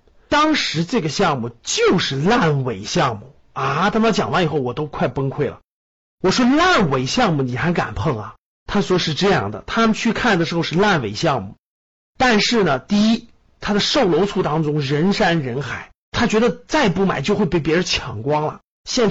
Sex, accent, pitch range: male, native, 150-210 Hz